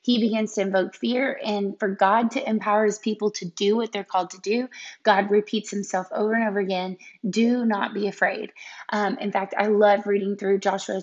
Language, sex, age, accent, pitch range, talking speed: English, female, 20-39, American, 200-225 Hz, 205 wpm